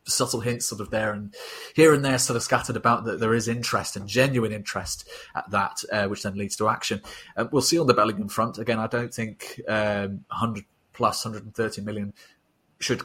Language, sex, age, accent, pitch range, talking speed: English, male, 30-49, British, 105-120 Hz, 205 wpm